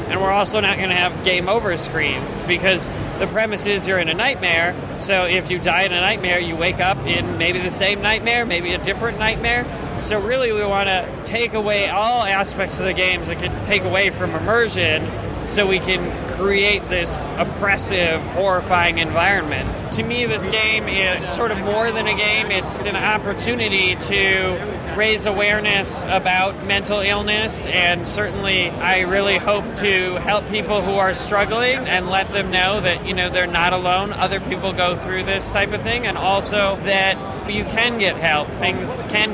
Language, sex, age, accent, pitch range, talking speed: English, male, 20-39, American, 185-210 Hz, 185 wpm